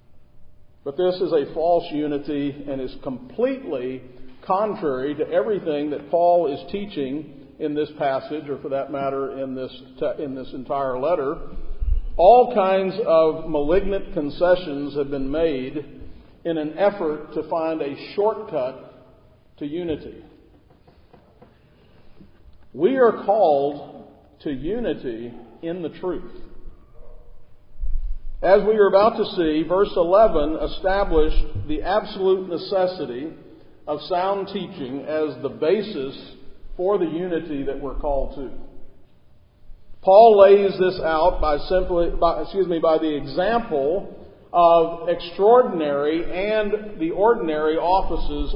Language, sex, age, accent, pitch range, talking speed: English, male, 50-69, American, 145-195 Hz, 120 wpm